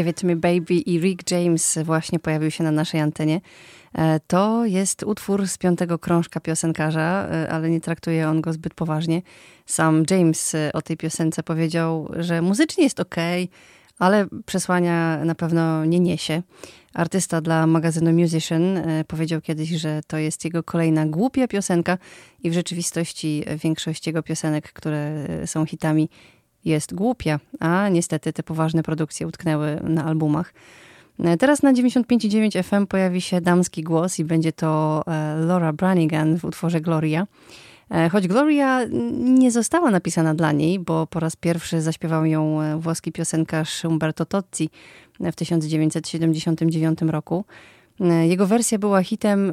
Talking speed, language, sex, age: 135 wpm, Polish, female, 30-49